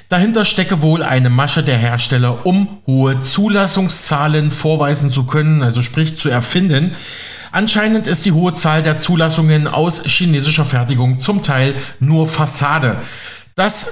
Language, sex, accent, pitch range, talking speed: German, male, German, 135-175 Hz, 140 wpm